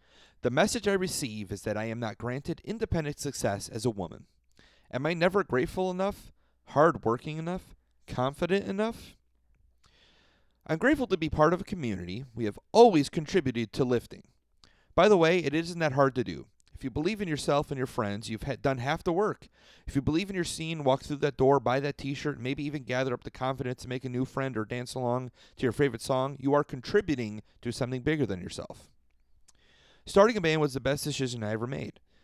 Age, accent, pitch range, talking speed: 30-49, American, 115-155 Hz, 205 wpm